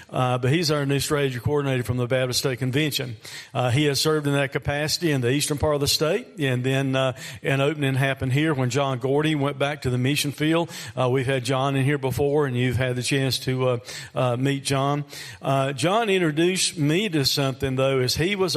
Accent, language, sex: American, Japanese, male